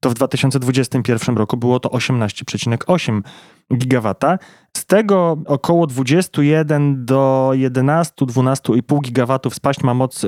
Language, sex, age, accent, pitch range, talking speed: Polish, male, 20-39, native, 125-150 Hz, 110 wpm